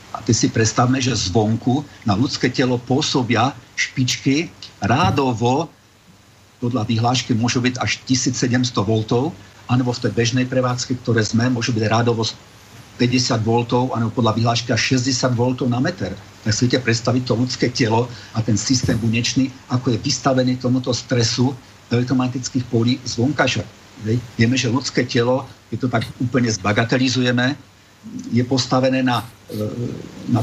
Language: Slovak